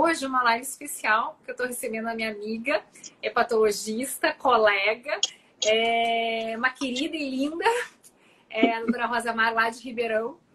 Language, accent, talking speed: Portuguese, Brazilian, 150 wpm